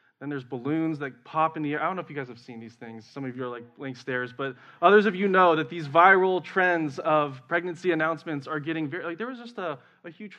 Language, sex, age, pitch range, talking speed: English, male, 20-39, 140-190 Hz, 270 wpm